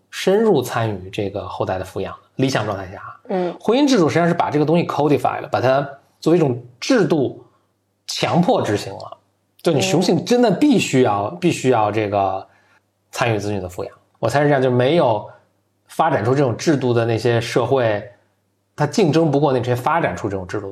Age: 20-39